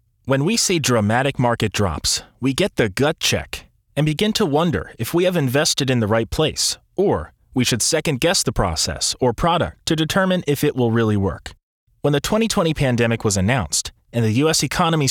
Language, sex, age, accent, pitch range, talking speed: English, male, 30-49, American, 115-160 Hz, 190 wpm